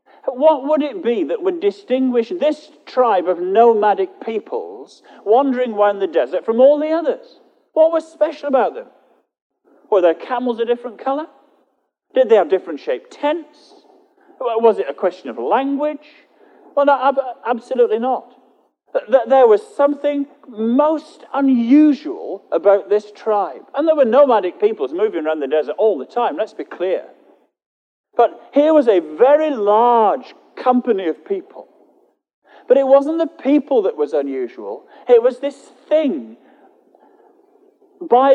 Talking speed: 145 wpm